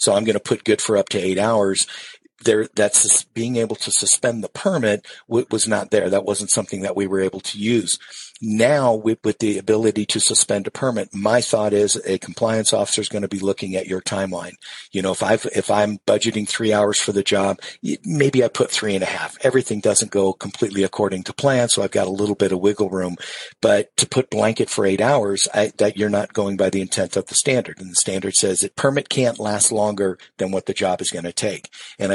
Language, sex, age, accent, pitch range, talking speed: English, male, 50-69, American, 100-115 Hz, 235 wpm